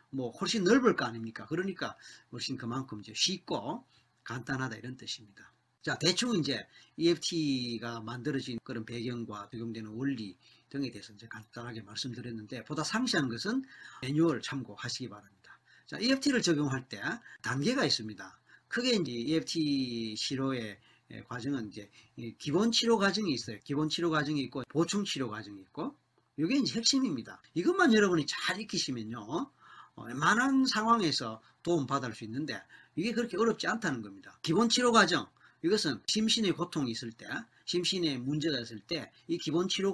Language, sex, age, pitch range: Korean, male, 40-59, 120-190 Hz